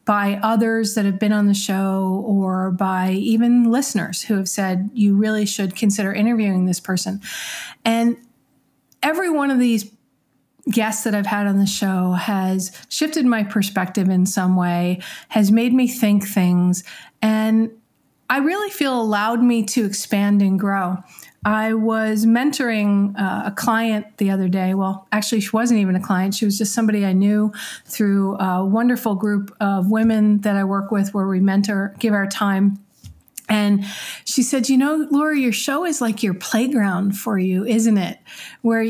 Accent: American